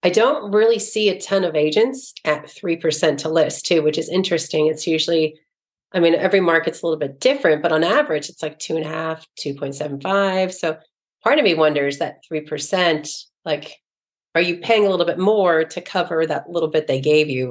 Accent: American